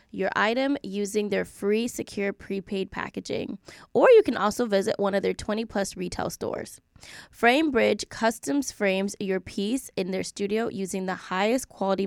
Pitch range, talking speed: 195-230 Hz, 165 wpm